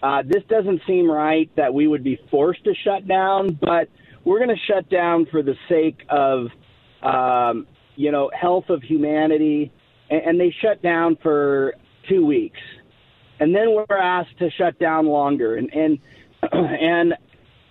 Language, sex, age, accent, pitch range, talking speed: English, male, 40-59, American, 145-175 Hz, 165 wpm